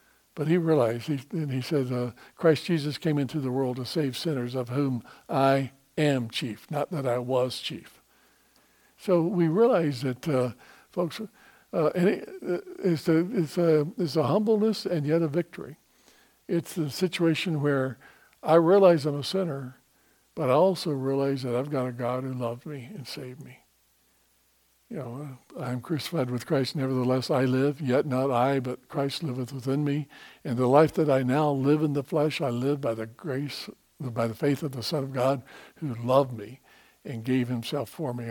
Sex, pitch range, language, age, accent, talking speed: male, 125-160 Hz, English, 60-79, American, 180 wpm